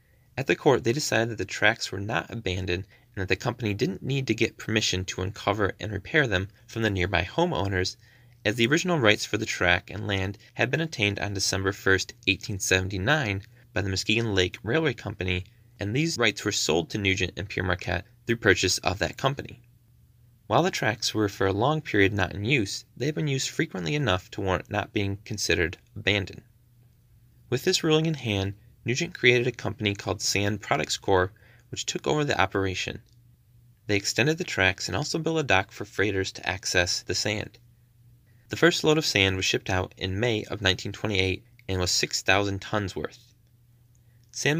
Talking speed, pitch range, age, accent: 190 wpm, 95-120 Hz, 20-39, American